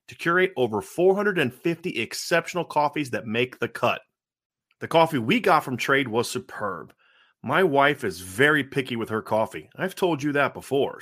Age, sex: 30-49, male